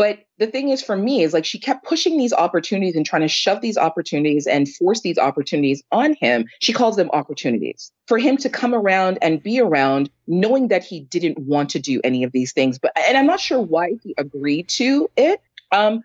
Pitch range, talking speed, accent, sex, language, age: 155-245 Hz, 220 wpm, American, female, English, 30-49